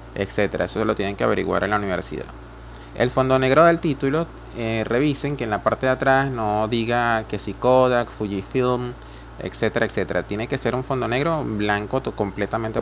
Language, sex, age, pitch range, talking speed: Spanish, male, 20-39, 95-125 Hz, 175 wpm